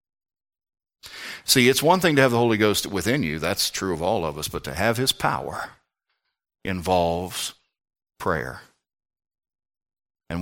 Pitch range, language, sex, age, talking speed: 80-105 Hz, English, male, 60-79, 145 wpm